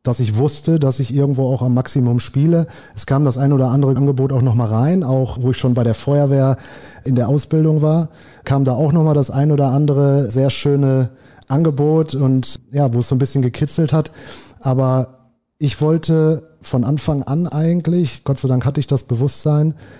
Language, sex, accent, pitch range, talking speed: German, male, German, 125-145 Hz, 195 wpm